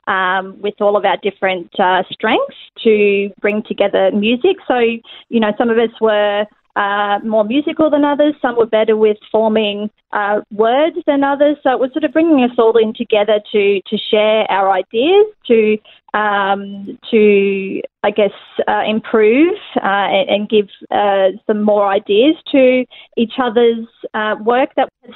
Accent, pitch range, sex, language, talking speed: Australian, 205-245 Hz, female, English, 165 wpm